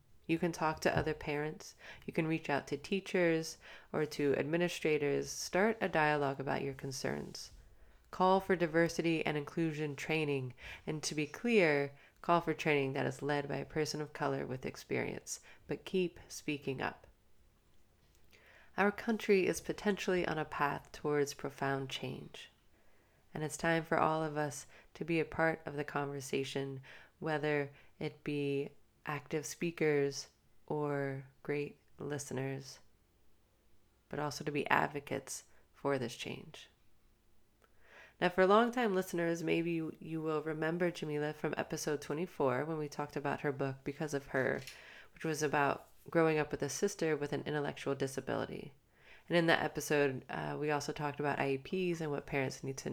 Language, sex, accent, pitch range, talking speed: English, female, American, 140-165 Hz, 155 wpm